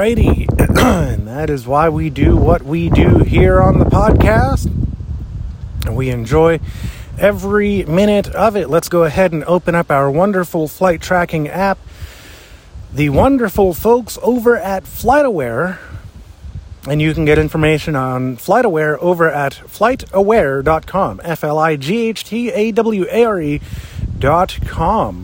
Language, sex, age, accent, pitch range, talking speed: English, male, 30-49, American, 120-195 Hz, 115 wpm